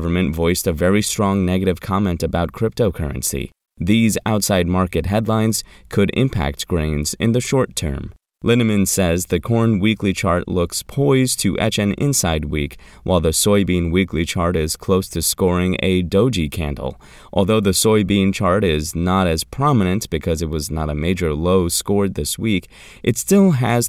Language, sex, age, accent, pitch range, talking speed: English, male, 20-39, American, 80-110 Hz, 165 wpm